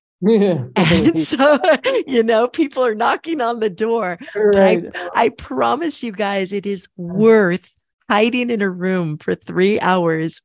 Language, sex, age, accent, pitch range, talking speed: English, female, 40-59, American, 170-220 Hz, 150 wpm